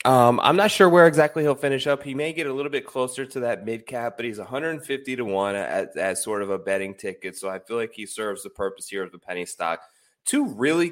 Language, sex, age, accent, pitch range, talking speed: English, male, 20-39, American, 100-135 Hz, 260 wpm